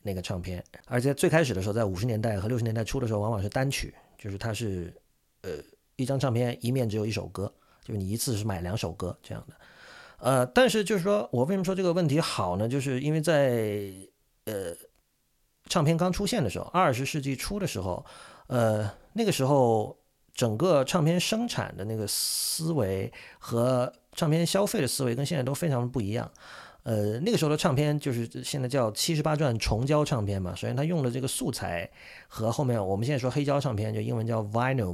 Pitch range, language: 110-150 Hz, Chinese